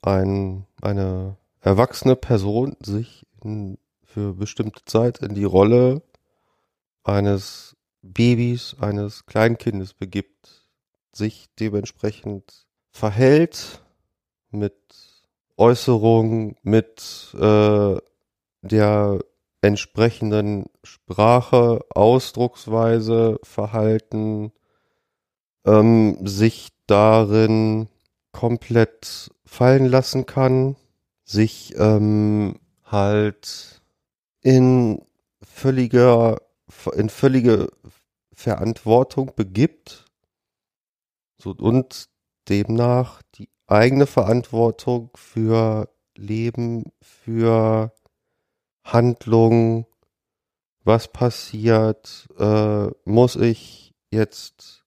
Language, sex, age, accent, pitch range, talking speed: German, male, 30-49, German, 105-120 Hz, 65 wpm